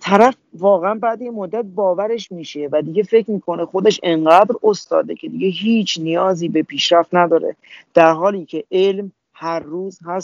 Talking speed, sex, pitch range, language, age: 160 wpm, male, 165-205 Hz, Persian, 40-59